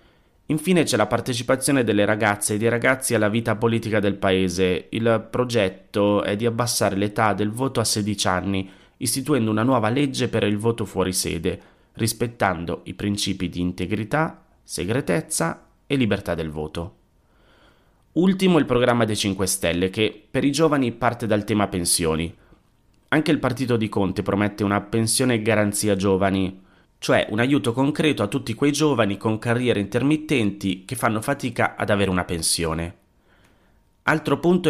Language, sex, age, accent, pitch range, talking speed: Italian, male, 30-49, native, 100-125 Hz, 150 wpm